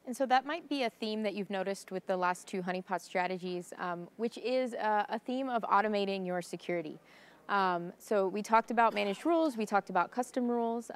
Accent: American